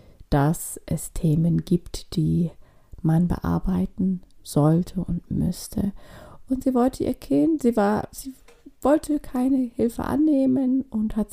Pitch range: 180-230 Hz